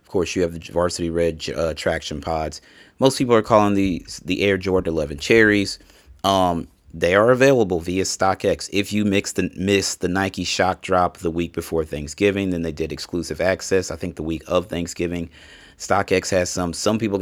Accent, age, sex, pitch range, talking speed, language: American, 30-49, male, 85-95 Hz, 190 wpm, English